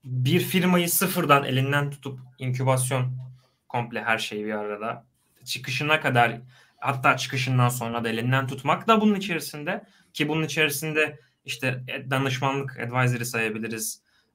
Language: Turkish